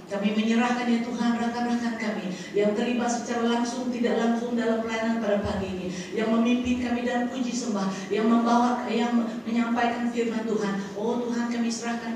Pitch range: 230-260 Hz